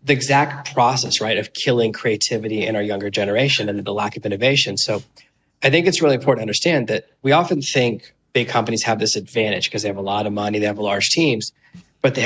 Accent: American